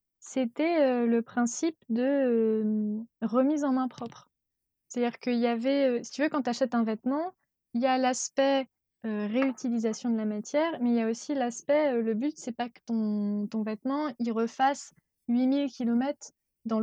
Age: 20-39